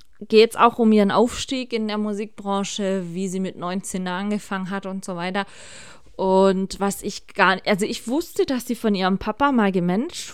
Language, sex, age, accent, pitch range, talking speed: German, female, 30-49, German, 185-220 Hz, 190 wpm